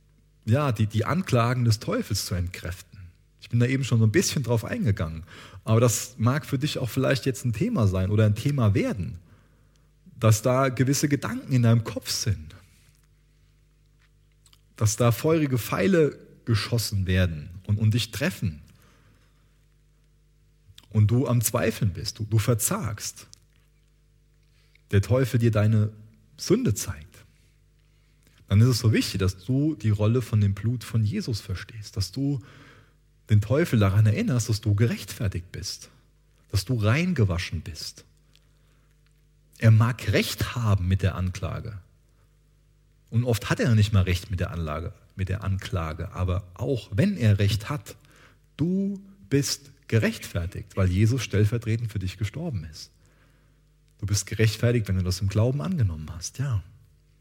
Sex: male